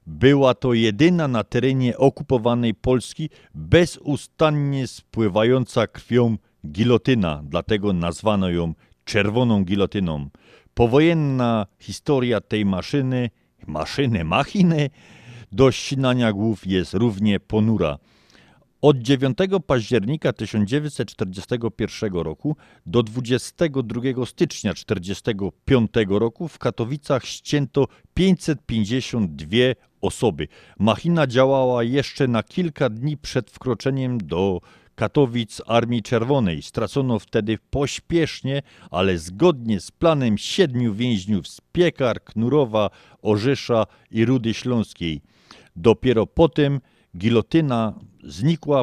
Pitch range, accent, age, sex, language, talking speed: 105-140 Hz, native, 50-69, male, Polish, 95 wpm